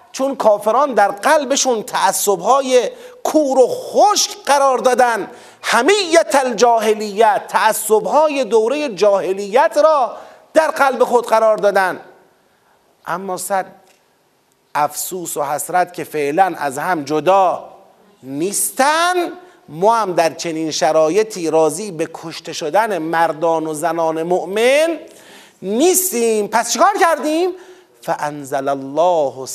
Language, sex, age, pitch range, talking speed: Persian, male, 30-49, 150-235 Hz, 105 wpm